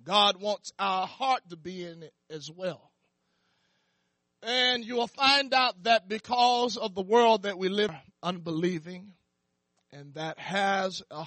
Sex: male